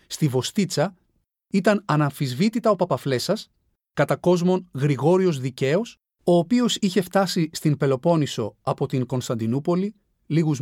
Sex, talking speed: male, 105 wpm